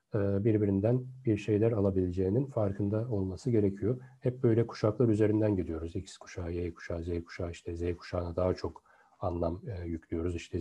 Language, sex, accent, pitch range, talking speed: Turkish, male, native, 95-120 Hz, 155 wpm